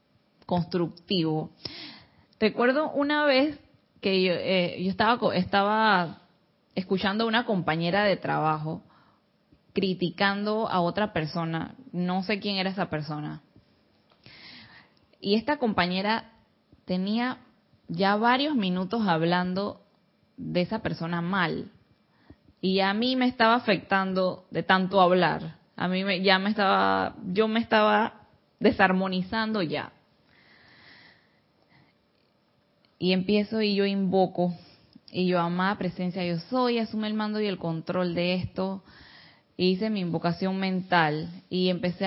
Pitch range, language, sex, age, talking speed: 180-215 Hz, Spanish, female, 10-29, 115 wpm